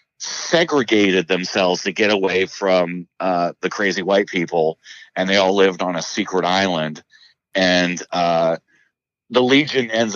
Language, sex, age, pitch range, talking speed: English, male, 40-59, 90-115 Hz, 140 wpm